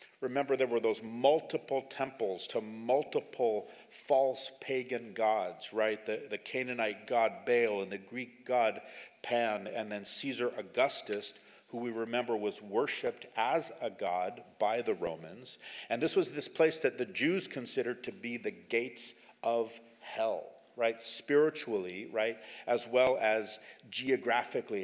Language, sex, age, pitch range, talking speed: English, male, 50-69, 110-150 Hz, 145 wpm